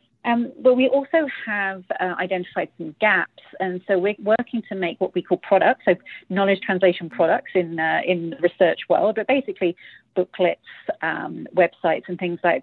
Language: English